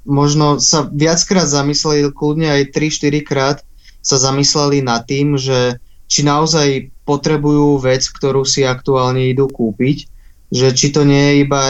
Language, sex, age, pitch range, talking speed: Slovak, male, 20-39, 130-145 Hz, 145 wpm